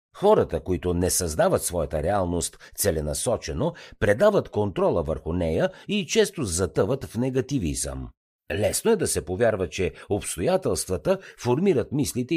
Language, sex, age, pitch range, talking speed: Bulgarian, male, 50-69, 80-125 Hz, 120 wpm